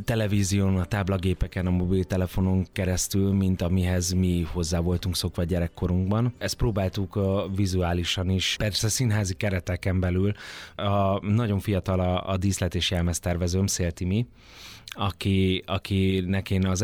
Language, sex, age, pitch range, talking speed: Hungarian, male, 30-49, 90-110 Hz, 130 wpm